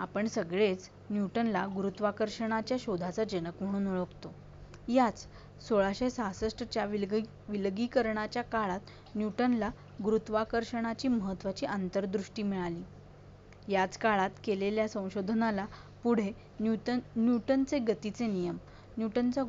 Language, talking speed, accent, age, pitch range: Marathi, 90 wpm, native, 30-49, 195-230 Hz